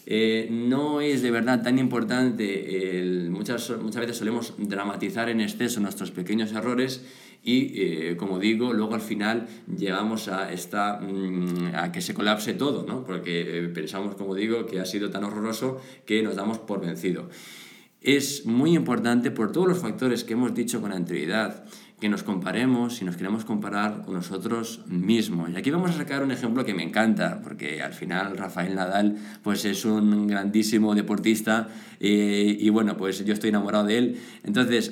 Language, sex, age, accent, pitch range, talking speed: Spanish, male, 20-39, Spanish, 100-125 Hz, 175 wpm